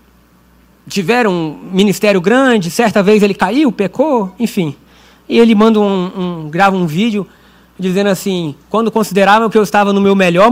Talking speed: 160 wpm